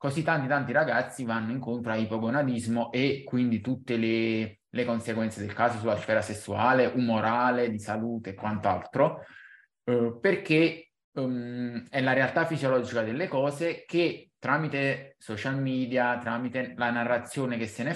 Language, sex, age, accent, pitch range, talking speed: Italian, male, 20-39, native, 115-145 Hz, 135 wpm